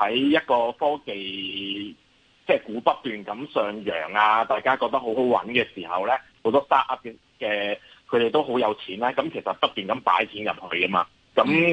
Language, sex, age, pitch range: Chinese, male, 30-49, 105-150 Hz